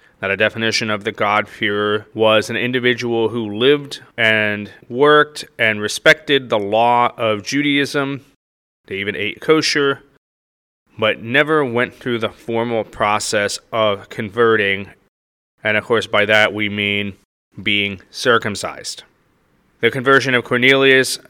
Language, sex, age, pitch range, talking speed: English, male, 30-49, 105-130 Hz, 125 wpm